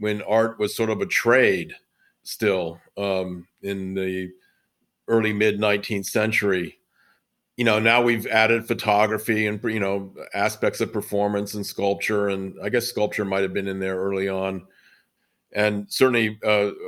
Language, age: English, 50-69